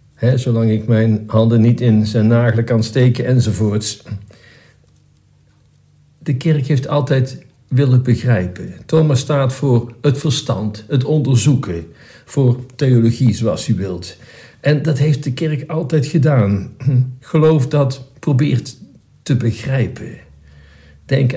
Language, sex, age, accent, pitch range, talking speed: Dutch, male, 60-79, Dutch, 115-135 Hz, 120 wpm